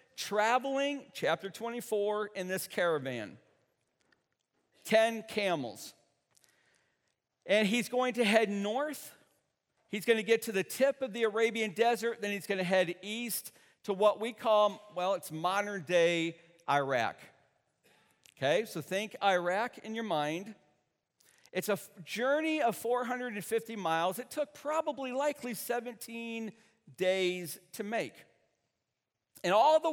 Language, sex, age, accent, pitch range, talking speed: English, male, 50-69, American, 180-240 Hz, 125 wpm